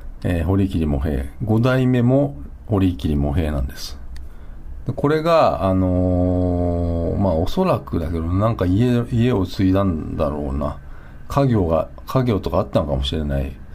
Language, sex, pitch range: Japanese, male, 70-110 Hz